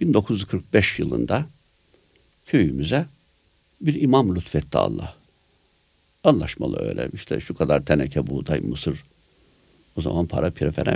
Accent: native